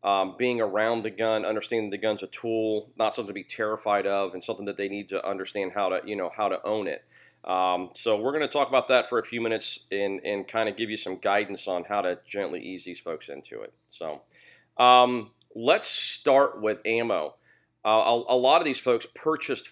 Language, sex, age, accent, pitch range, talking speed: English, male, 40-59, American, 105-120 Hz, 225 wpm